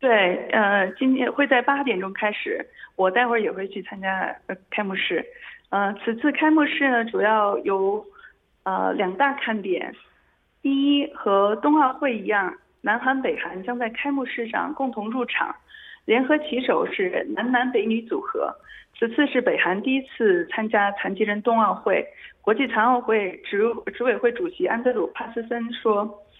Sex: female